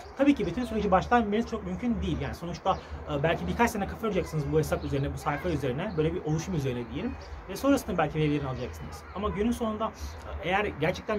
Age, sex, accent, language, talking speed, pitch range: 30-49, male, native, Turkish, 190 wpm, 155-215 Hz